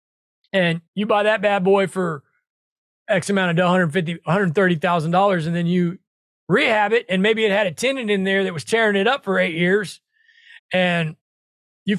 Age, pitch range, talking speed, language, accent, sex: 30-49, 175-240 Hz, 170 wpm, English, American, male